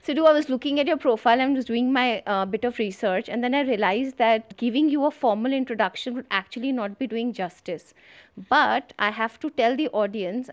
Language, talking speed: English, 215 wpm